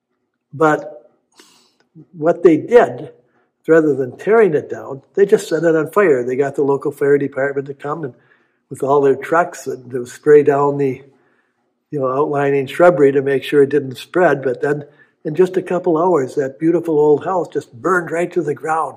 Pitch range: 145-180 Hz